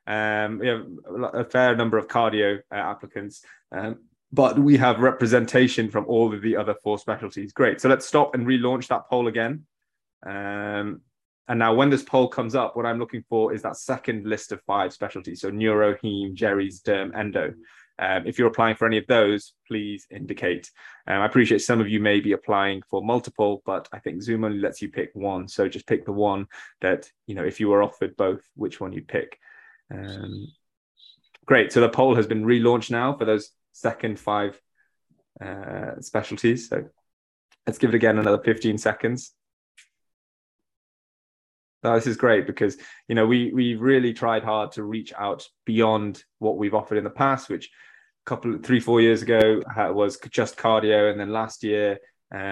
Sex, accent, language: male, British, English